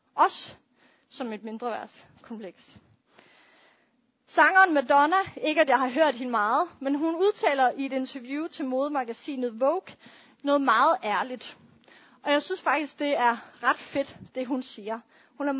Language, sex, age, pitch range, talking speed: Danish, female, 30-49, 245-315 Hz, 150 wpm